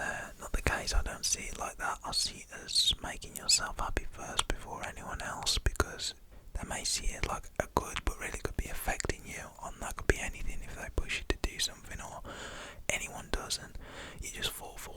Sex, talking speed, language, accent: male, 215 wpm, English, British